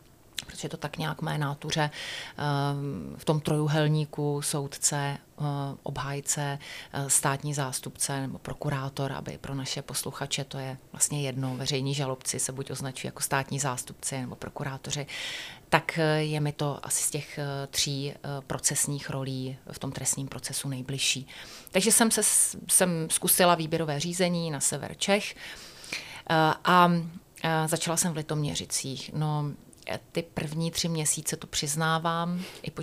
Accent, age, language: native, 30-49, Czech